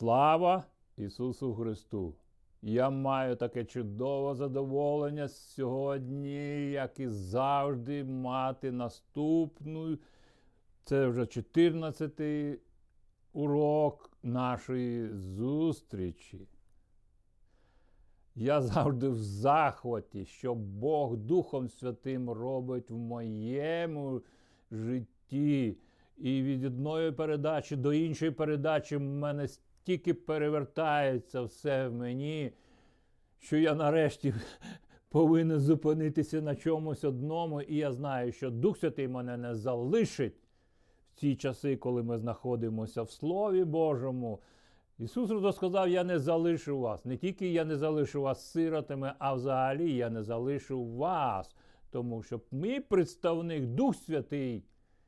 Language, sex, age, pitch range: Ukrainian, male, 60-79, 120-155 Hz